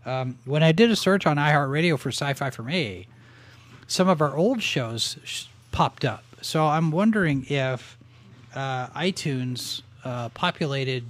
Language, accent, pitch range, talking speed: English, American, 120-150 Hz, 145 wpm